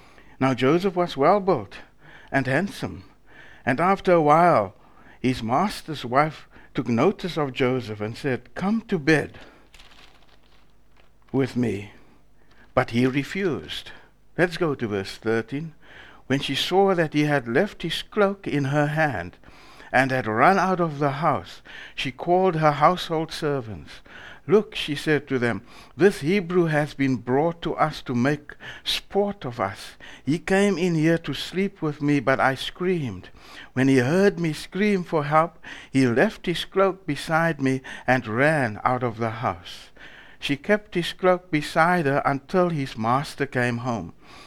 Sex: male